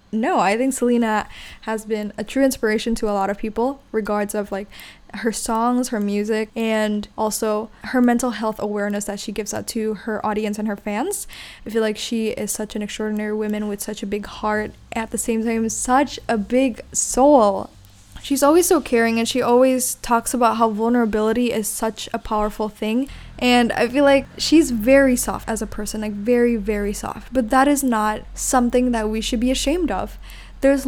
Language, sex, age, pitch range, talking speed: English, female, 10-29, 215-255 Hz, 195 wpm